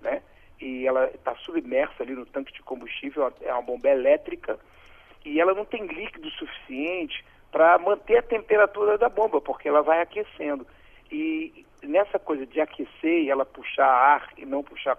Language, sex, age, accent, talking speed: Portuguese, male, 40-59, Brazilian, 170 wpm